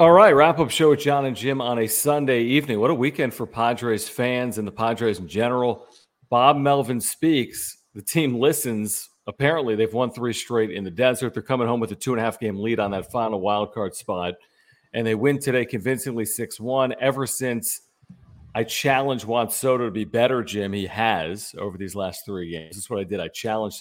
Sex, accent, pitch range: male, American, 105-130 Hz